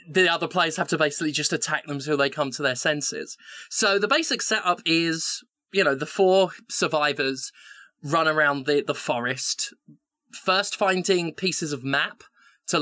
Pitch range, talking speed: 140-170 Hz, 170 wpm